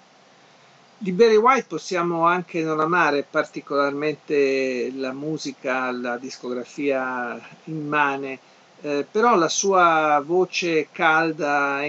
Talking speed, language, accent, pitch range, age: 105 wpm, Italian, native, 135-165 Hz, 50-69